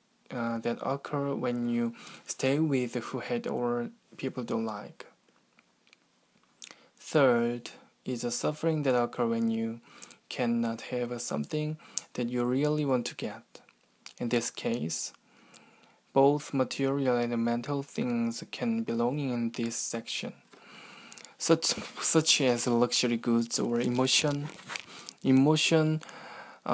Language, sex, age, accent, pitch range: Korean, male, 20-39, native, 120-150 Hz